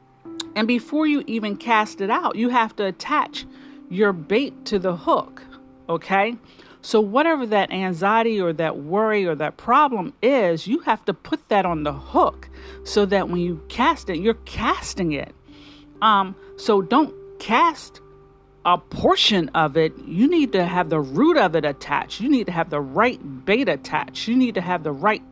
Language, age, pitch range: English, 40-59, 160-230 Hz